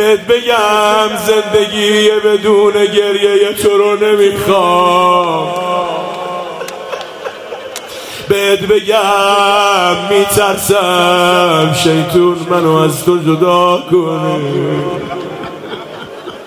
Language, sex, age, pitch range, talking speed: Persian, male, 40-59, 180-205 Hz, 60 wpm